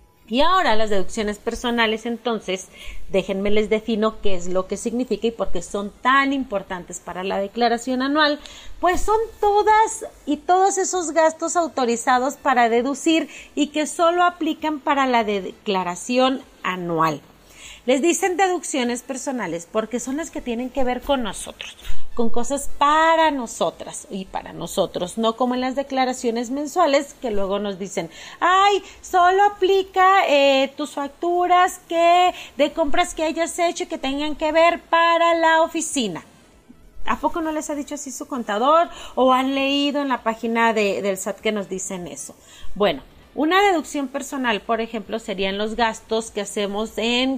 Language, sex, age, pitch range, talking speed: Spanish, female, 40-59, 220-320 Hz, 160 wpm